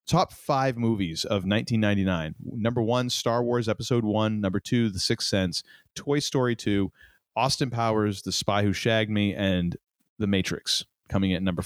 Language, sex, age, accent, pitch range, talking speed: English, male, 30-49, American, 100-130 Hz, 165 wpm